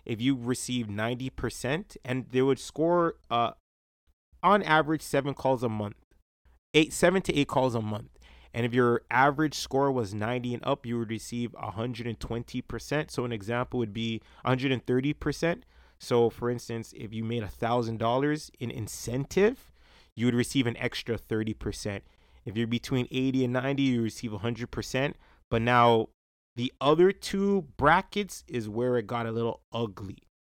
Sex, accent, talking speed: male, American, 180 wpm